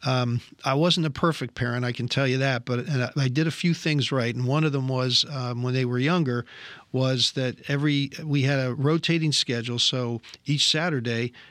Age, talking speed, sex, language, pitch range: 50-69, 215 wpm, male, English, 125-145 Hz